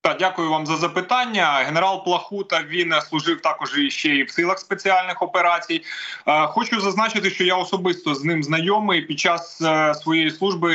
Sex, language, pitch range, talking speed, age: male, Ukrainian, 155-185 Hz, 155 wpm, 20-39